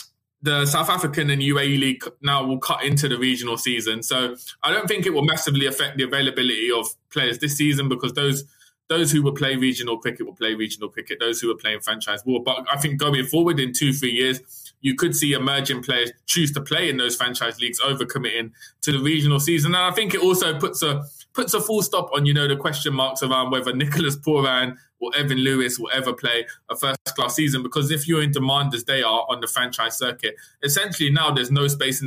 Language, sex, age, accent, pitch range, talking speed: English, male, 20-39, British, 125-155 Hz, 225 wpm